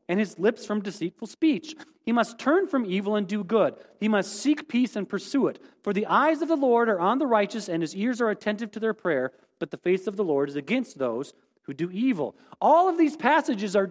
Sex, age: male, 40-59